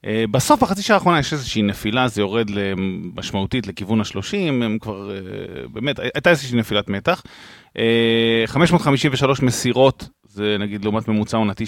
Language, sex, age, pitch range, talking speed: Hebrew, male, 30-49, 100-125 Hz, 145 wpm